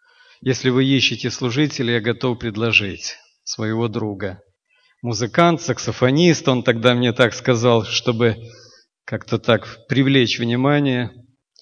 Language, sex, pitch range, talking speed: Russian, male, 115-135 Hz, 110 wpm